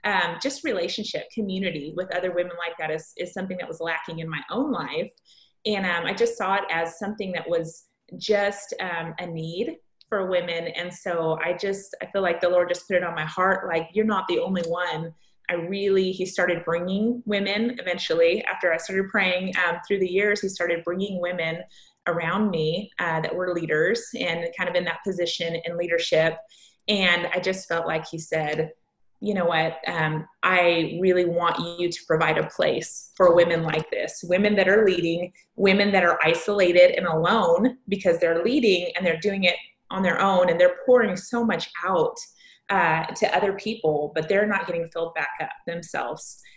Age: 20-39